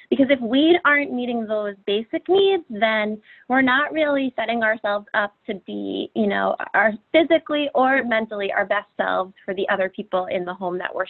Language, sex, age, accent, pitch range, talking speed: English, female, 20-39, American, 195-270 Hz, 190 wpm